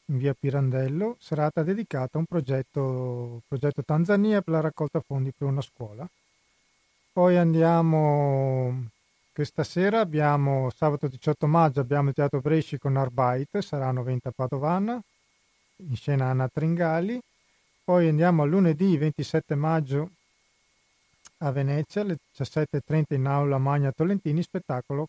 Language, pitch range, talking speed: Italian, 140-170 Hz, 130 wpm